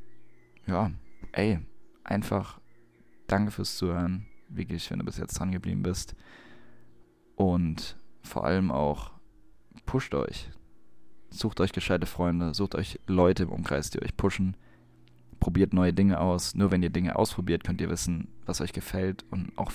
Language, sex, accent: German, male, German